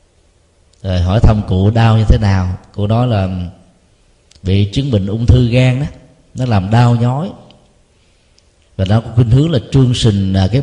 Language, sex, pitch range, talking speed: Vietnamese, male, 100-125 Hz, 170 wpm